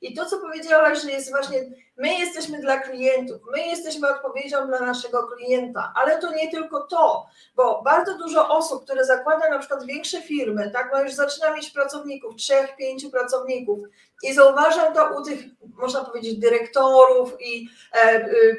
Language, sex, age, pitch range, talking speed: Polish, female, 30-49, 255-310 Hz, 170 wpm